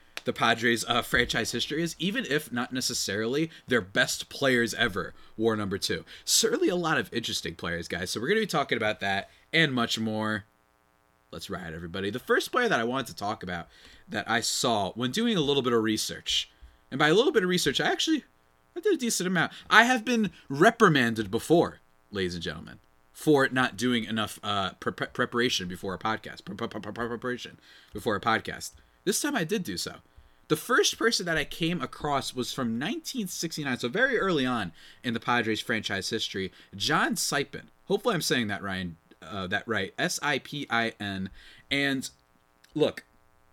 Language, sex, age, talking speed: English, male, 30-49, 175 wpm